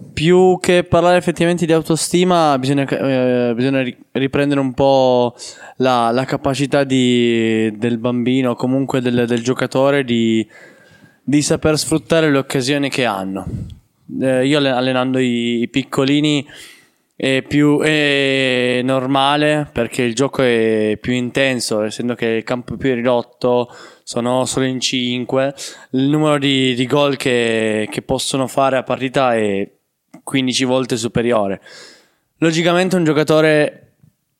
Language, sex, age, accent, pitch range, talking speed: Italian, male, 20-39, native, 120-145 Hz, 130 wpm